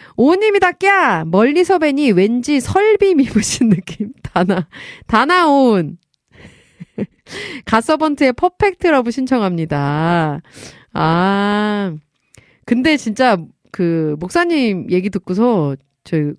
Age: 30-49